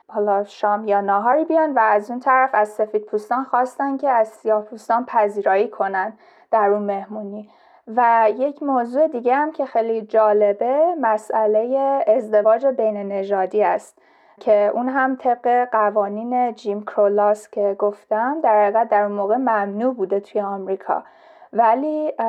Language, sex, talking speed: Persian, female, 135 wpm